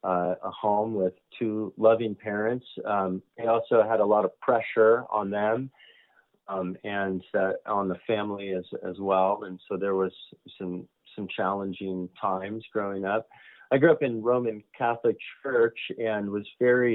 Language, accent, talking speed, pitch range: English, American, 165 wpm, 90-110 Hz